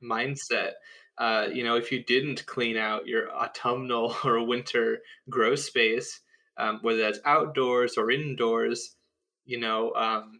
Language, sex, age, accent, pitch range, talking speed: English, male, 20-39, American, 115-140 Hz, 140 wpm